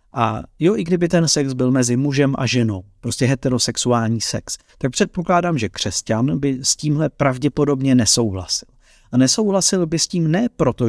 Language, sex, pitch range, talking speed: Czech, male, 115-165 Hz, 165 wpm